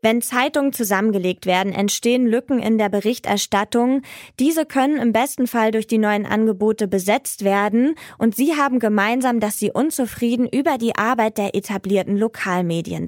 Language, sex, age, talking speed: German, female, 20-39, 150 wpm